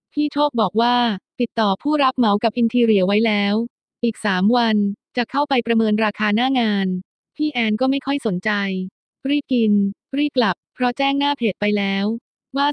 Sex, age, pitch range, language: female, 20-39, 205-250 Hz, Thai